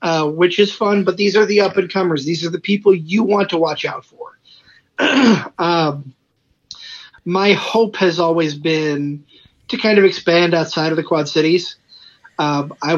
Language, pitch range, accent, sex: English, 150-180 Hz, American, male